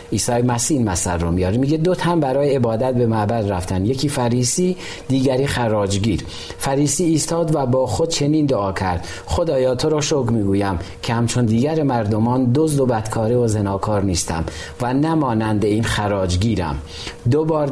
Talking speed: 150 wpm